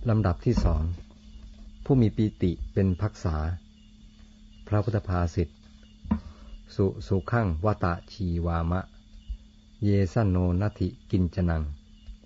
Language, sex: Thai, male